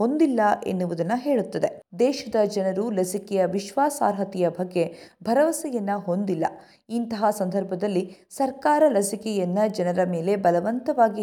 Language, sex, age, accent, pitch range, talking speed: Kannada, female, 50-69, native, 185-255 Hz, 90 wpm